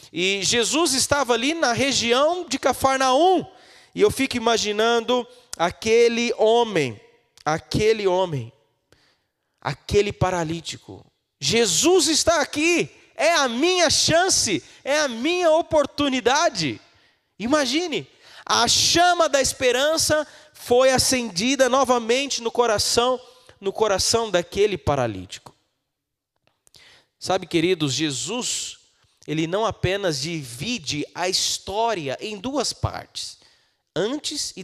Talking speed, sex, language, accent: 100 wpm, male, Portuguese, Brazilian